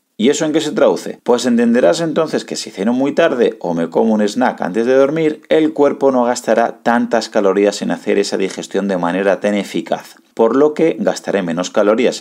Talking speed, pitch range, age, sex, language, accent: 205 wpm, 115-160 Hz, 40-59, male, Spanish, Spanish